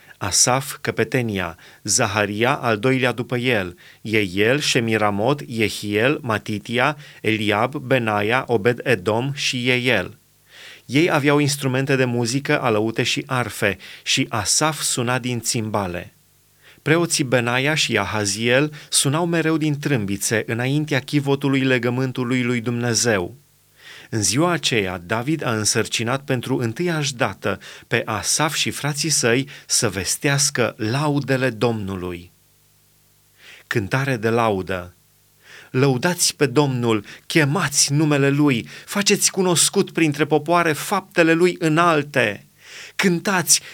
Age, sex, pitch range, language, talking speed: 30-49, male, 115-160 Hz, Romanian, 110 wpm